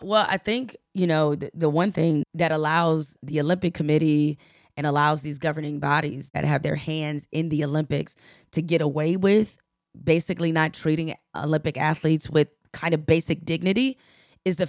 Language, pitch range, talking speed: English, 150-175 Hz, 170 wpm